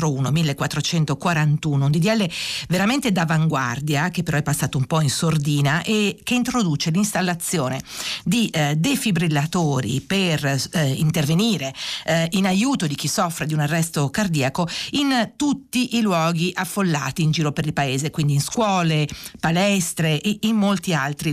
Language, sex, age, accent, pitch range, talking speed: Italian, female, 50-69, native, 150-190 Hz, 145 wpm